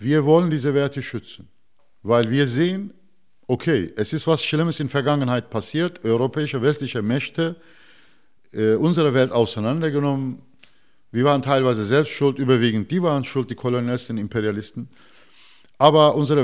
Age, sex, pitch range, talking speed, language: 50-69, male, 110-145 Hz, 140 wpm, German